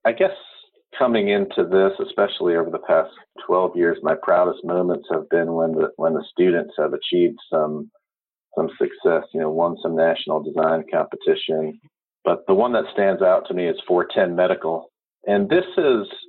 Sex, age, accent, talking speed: male, 40-59, American, 175 wpm